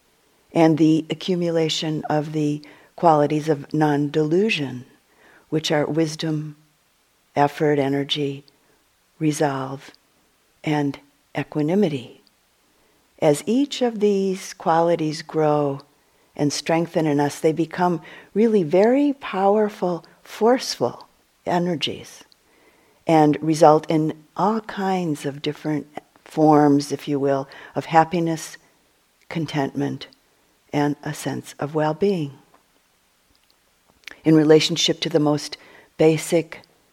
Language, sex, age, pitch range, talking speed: English, female, 50-69, 145-170 Hz, 95 wpm